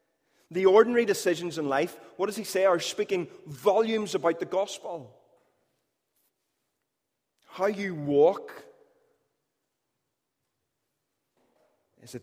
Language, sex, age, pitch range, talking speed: English, male, 30-49, 145-200 Hz, 100 wpm